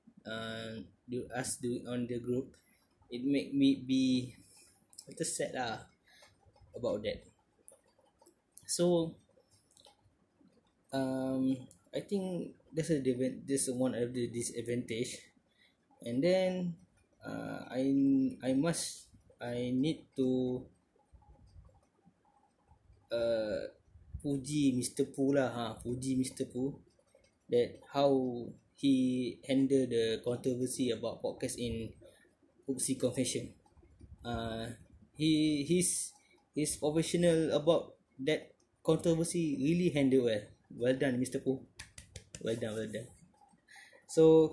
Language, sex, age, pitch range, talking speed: English, male, 20-39, 120-145 Hz, 105 wpm